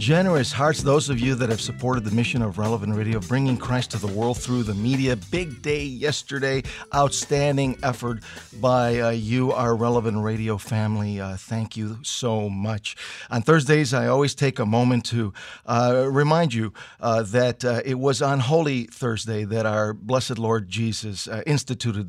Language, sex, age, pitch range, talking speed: English, male, 50-69, 110-130 Hz, 175 wpm